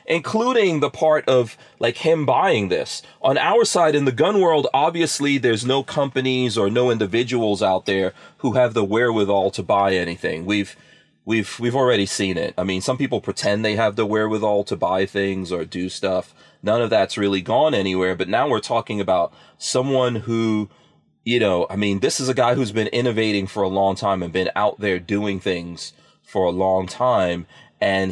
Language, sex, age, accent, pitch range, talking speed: English, male, 30-49, American, 95-130 Hz, 195 wpm